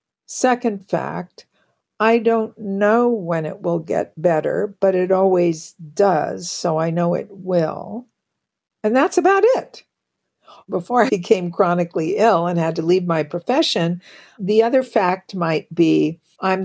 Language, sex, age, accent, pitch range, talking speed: English, female, 60-79, American, 170-230 Hz, 145 wpm